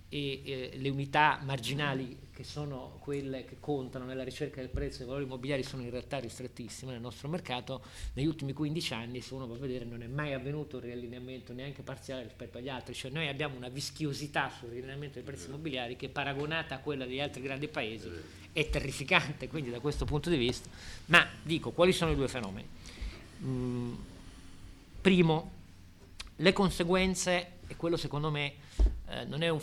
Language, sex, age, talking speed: Italian, male, 50-69, 180 wpm